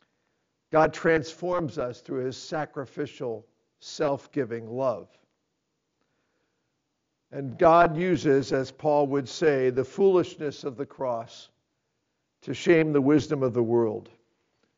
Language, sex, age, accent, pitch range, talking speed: English, male, 50-69, American, 140-180 Hz, 110 wpm